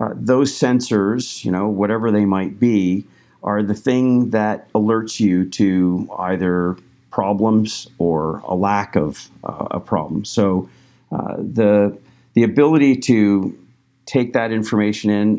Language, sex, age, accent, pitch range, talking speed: English, male, 50-69, American, 95-110 Hz, 135 wpm